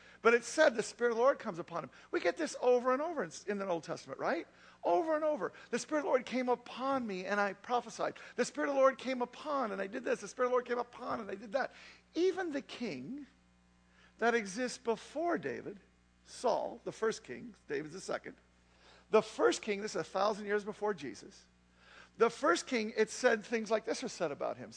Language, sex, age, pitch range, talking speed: English, male, 50-69, 170-245 Hz, 230 wpm